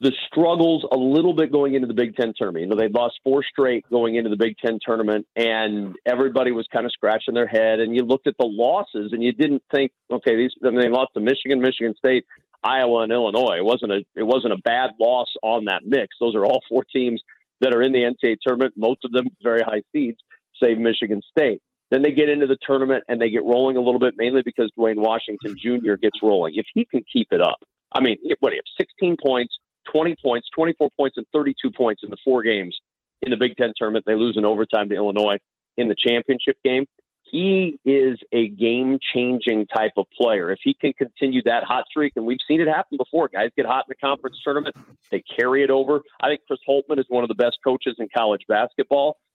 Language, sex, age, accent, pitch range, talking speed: English, male, 50-69, American, 115-140 Hz, 230 wpm